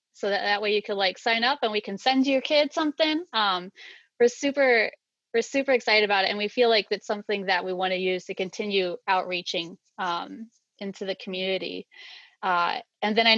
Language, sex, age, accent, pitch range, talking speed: English, female, 30-49, American, 190-245 Hz, 205 wpm